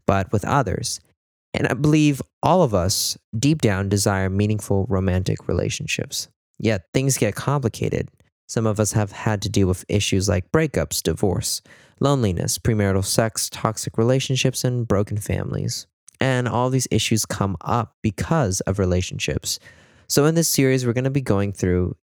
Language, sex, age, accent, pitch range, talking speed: English, male, 20-39, American, 95-130 Hz, 155 wpm